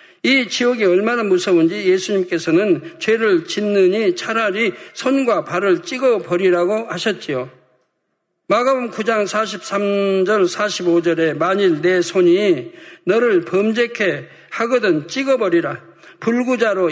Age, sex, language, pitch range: 50-69, male, Korean, 175-225 Hz